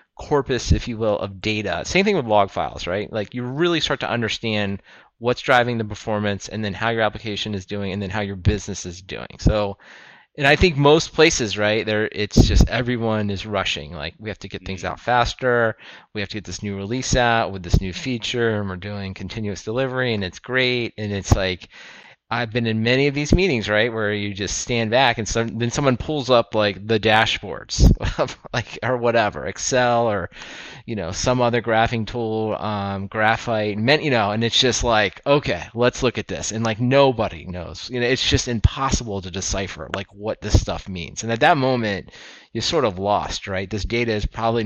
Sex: male